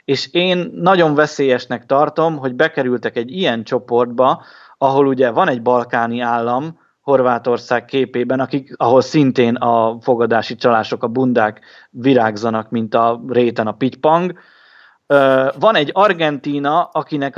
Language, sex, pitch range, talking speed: Hungarian, male, 130-155 Hz, 125 wpm